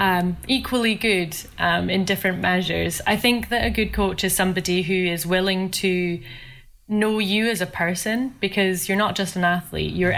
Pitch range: 170-195 Hz